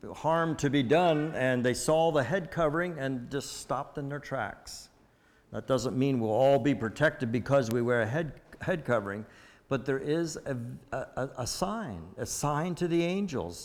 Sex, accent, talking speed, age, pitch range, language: male, American, 185 wpm, 60-79, 125-170 Hz, English